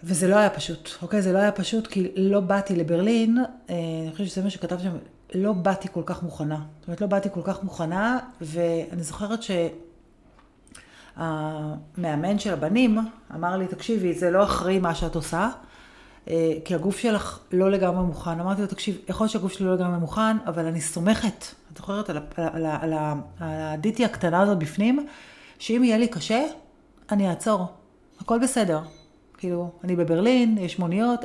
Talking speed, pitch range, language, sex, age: 180 wpm, 170-215 Hz, Hebrew, female, 40-59